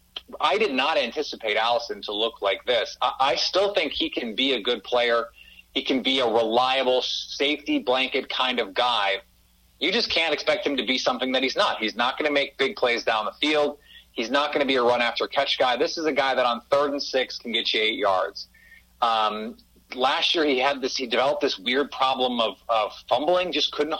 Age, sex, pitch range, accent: 30-49, male, 120-145 Hz, American